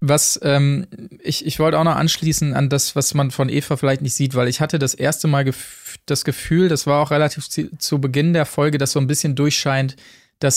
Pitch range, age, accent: 130-155 Hz, 20-39, German